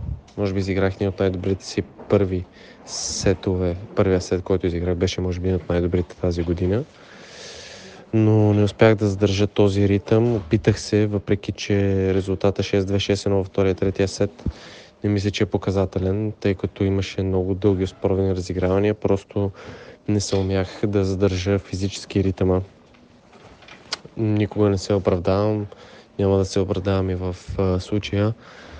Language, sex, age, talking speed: Bulgarian, male, 20-39, 145 wpm